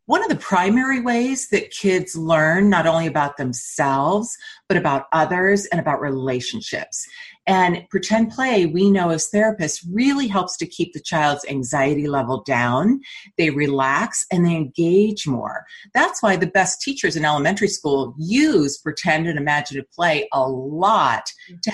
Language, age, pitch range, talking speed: English, 40-59, 145-210 Hz, 155 wpm